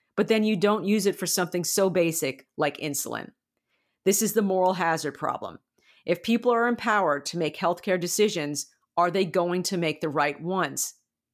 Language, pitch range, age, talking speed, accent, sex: English, 165-200 Hz, 50-69, 180 wpm, American, female